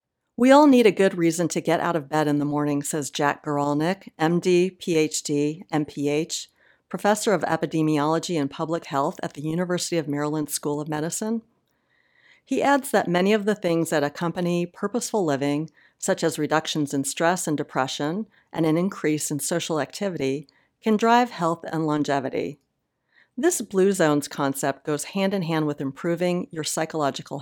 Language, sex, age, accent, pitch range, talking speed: English, female, 50-69, American, 150-195 Hz, 160 wpm